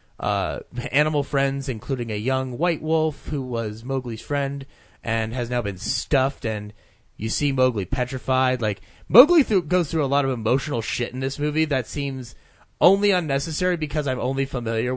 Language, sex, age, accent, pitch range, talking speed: English, male, 30-49, American, 105-140 Hz, 170 wpm